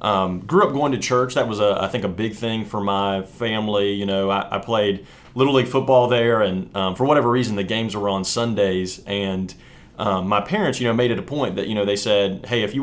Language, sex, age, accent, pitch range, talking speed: English, male, 30-49, American, 100-120 Hz, 250 wpm